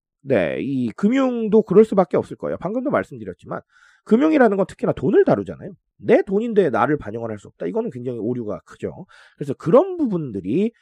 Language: Korean